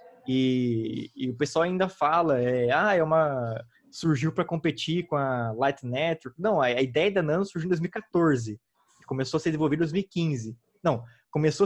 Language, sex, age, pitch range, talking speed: Portuguese, male, 20-39, 135-180 Hz, 175 wpm